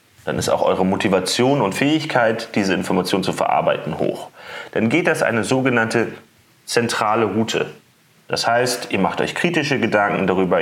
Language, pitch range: German, 100-120 Hz